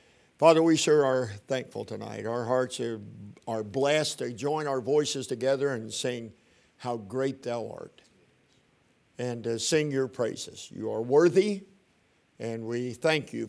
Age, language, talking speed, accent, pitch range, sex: 50-69, English, 145 wpm, American, 115-150 Hz, male